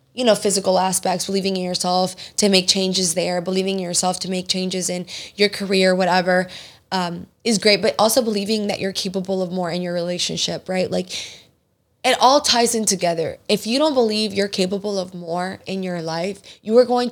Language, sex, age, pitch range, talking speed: English, female, 10-29, 185-215 Hz, 195 wpm